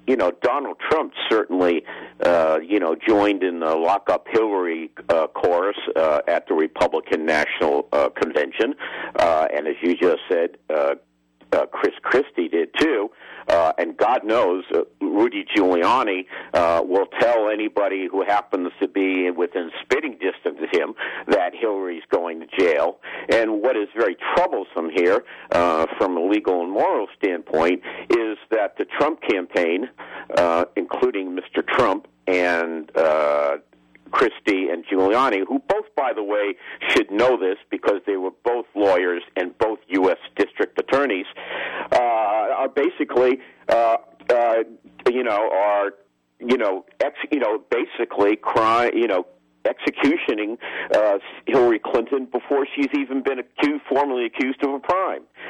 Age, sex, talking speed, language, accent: 50-69, male, 145 wpm, English, American